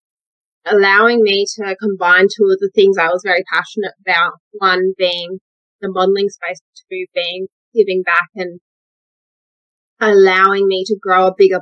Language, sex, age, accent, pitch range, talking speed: English, female, 20-39, Australian, 180-215 Hz, 150 wpm